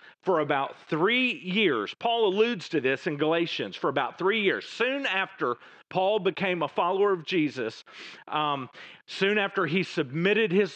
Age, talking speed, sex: 40-59, 155 wpm, male